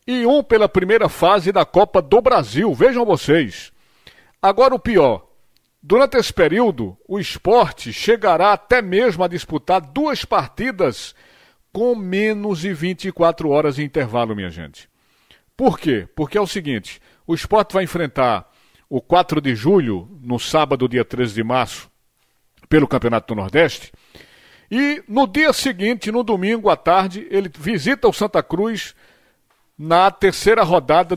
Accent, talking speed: Brazilian, 145 wpm